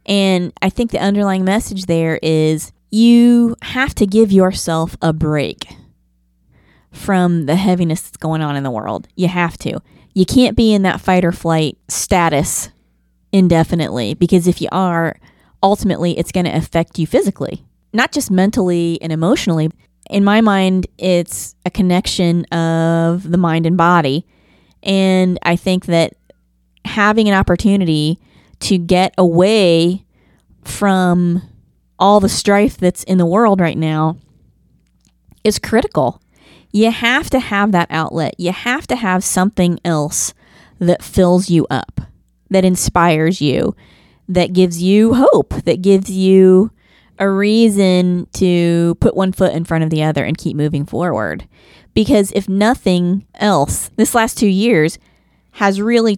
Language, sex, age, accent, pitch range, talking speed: English, female, 30-49, American, 165-195 Hz, 145 wpm